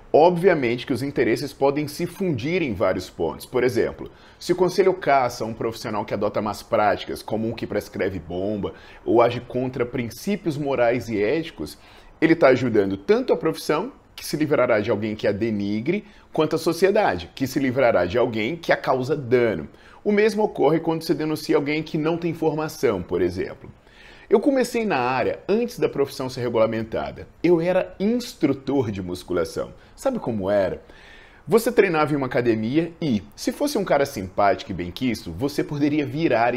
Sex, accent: male, Brazilian